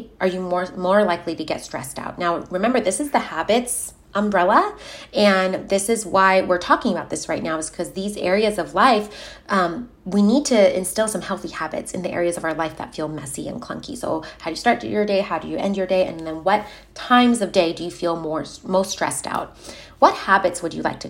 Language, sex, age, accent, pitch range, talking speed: English, female, 30-49, American, 170-205 Hz, 235 wpm